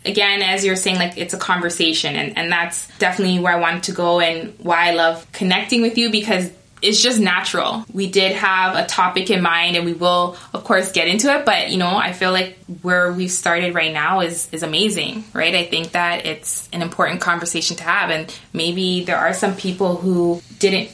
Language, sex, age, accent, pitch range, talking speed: English, female, 20-39, American, 165-200 Hz, 220 wpm